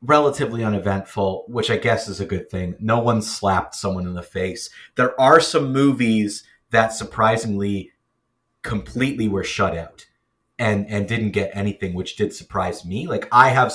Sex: male